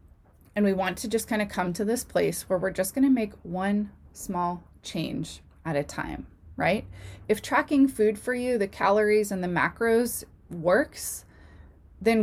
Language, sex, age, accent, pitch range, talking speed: English, female, 20-39, American, 175-220 Hz, 175 wpm